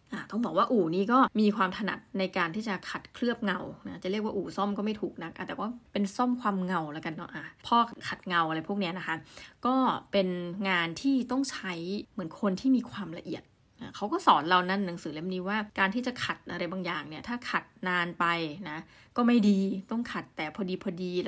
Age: 20-39